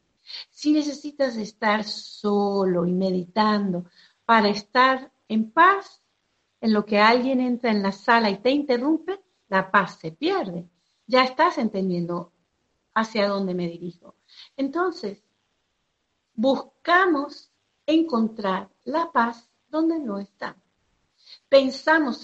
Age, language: 50-69, Spanish